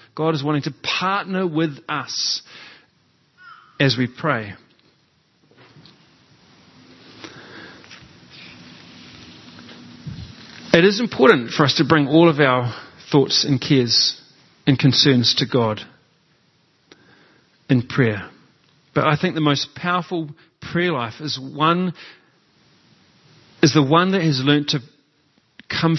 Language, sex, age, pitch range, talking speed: English, male, 40-59, 125-160 Hz, 110 wpm